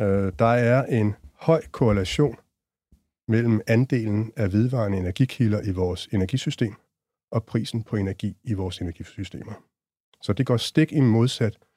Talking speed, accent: 125 wpm, native